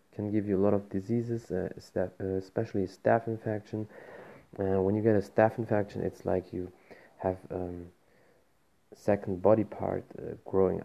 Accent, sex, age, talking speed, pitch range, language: German, male, 30-49, 165 wpm, 95-105 Hz, German